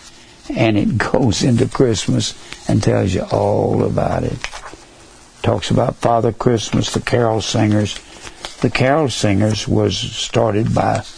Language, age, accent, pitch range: English, 60-79, American, 105-125 Hz